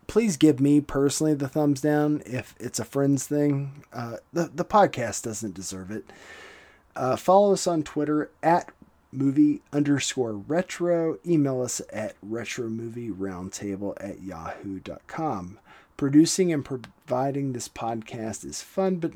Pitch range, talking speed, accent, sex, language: 100-150 Hz, 130 wpm, American, male, English